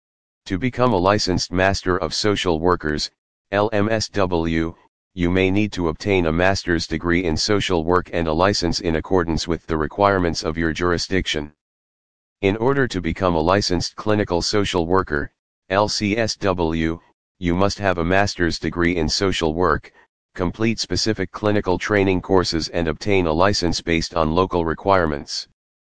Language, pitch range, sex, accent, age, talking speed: English, 80-100 Hz, male, American, 40-59, 145 wpm